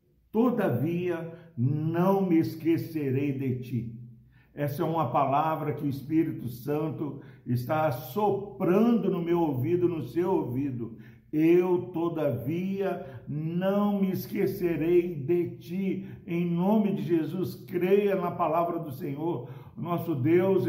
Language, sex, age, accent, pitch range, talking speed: Portuguese, male, 60-79, Brazilian, 150-185 Hz, 115 wpm